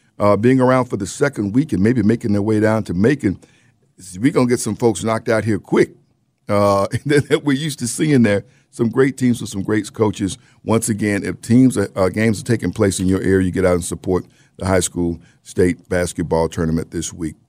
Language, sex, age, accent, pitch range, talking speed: English, male, 50-69, American, 90-110 Hz, 225 wpm